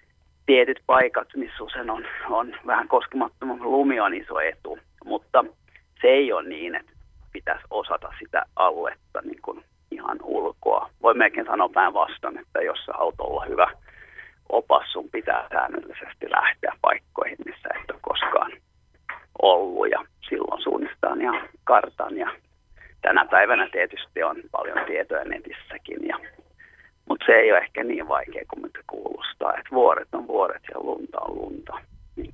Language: Finnish